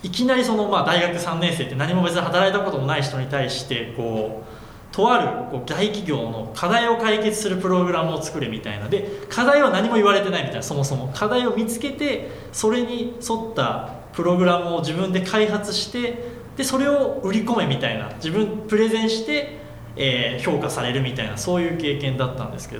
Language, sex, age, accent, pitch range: Japanese, male, 20-39, native, 130-205 Hz